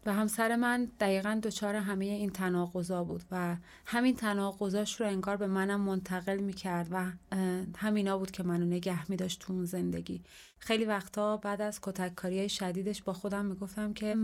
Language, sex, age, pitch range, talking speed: Persian, female, 30-49, 180-205 Hz, 155 wpm